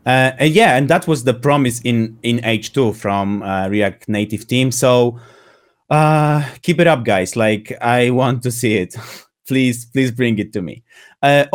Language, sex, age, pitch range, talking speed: English, male, 30-49, 120-150 Hz, 180 wpm